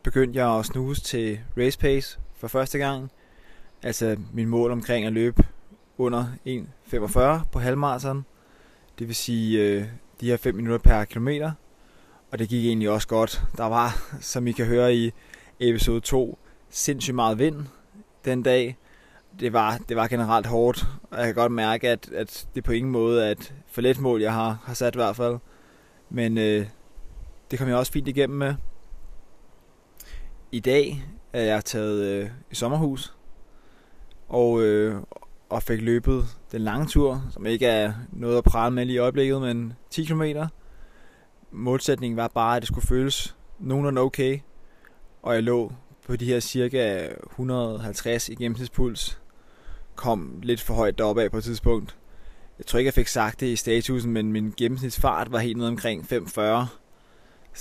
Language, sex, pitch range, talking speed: Danish, male, 115-130 Hz, 170 wpm